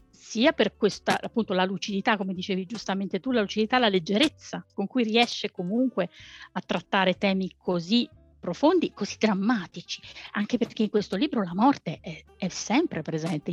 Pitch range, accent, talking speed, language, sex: 180-235 Hz, native, 160 wpm, Italian, female